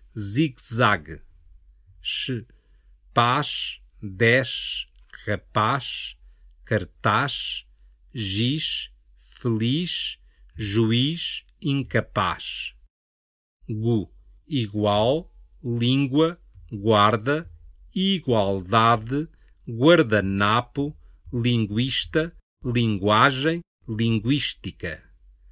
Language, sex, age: Chinese, male, 50-69